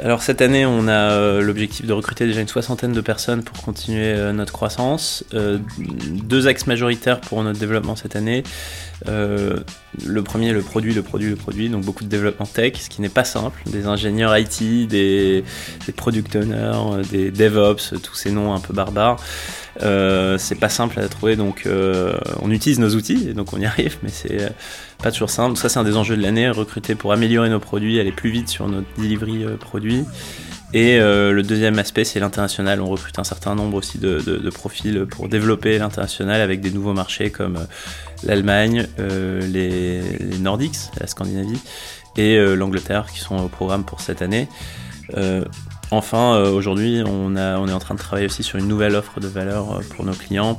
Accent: French